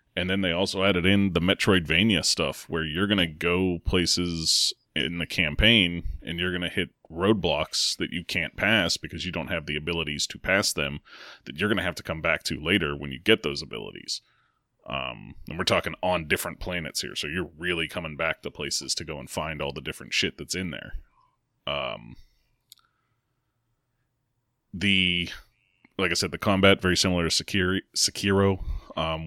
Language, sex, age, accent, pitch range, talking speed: English, male, 30-49, American, 80-100 Hz, 185 wpm